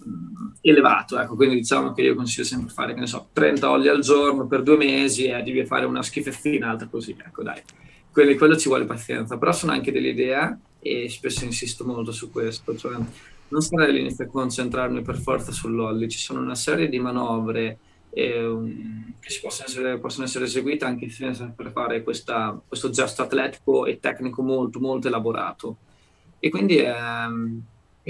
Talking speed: 175 wpm